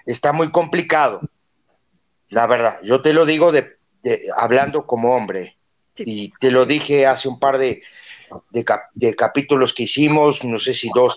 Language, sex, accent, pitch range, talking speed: Spanish, male, Mexican, 115-135 Hz, 150 wpm